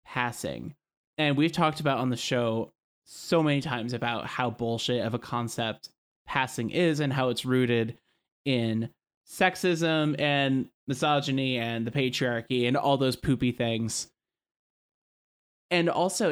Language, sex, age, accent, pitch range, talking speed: English, male, 20-39, American, 115-140 Hz, 135 wpm